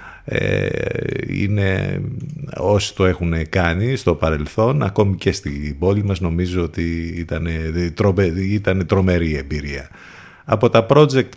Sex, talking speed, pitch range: male, 110 wpm, 85-115 Hz